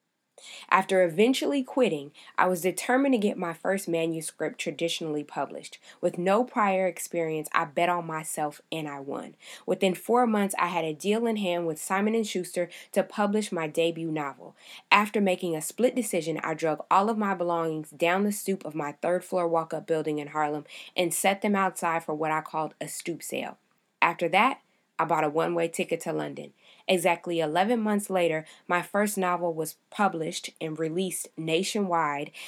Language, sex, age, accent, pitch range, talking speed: English, female, 20-39, American, 160-190 Hz, 175 wpm